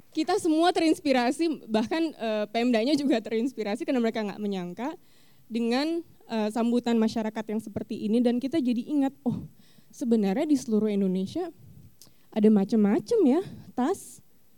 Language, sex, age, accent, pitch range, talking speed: Indonesian, female, 20-39, native, 215-260 Hz, 125 wpm